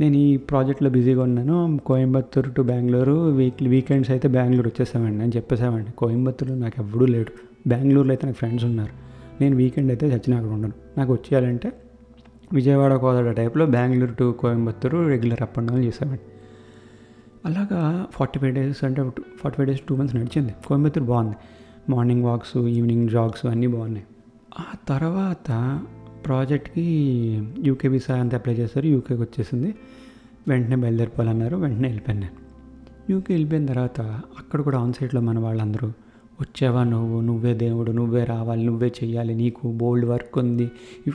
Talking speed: 145 wpm